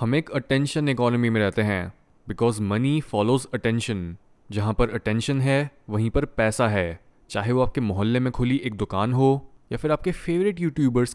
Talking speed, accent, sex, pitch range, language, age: 180 wpm, native, male, 115-155 Hz, Hindi, 20-39